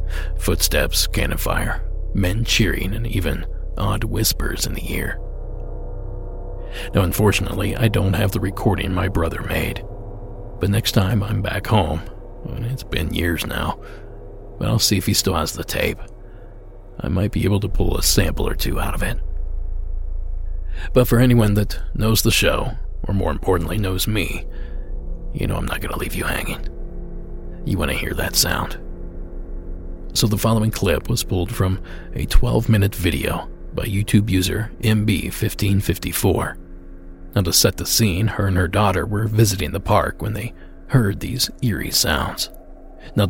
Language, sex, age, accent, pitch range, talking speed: English, male, 40-59, American, 85-105 Hz, 160 wpm